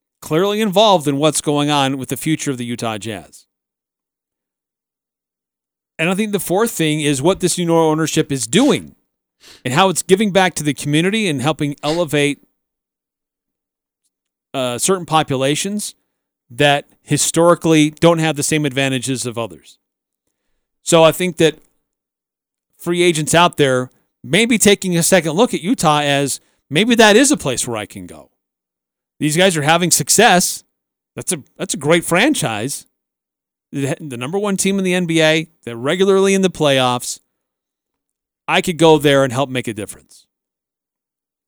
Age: 40-59